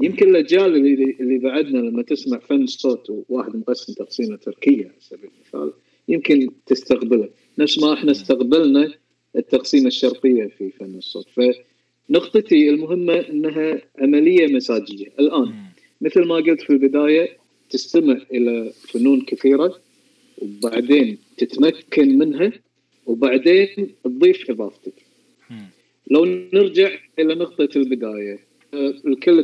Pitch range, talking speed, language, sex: 125-180 Hz, 110 wpm, Arabic, male